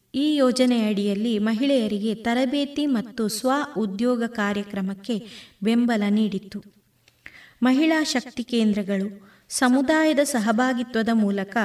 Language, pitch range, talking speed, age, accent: Kannada, 205-255 Hz, 75 wpm, 20-39, native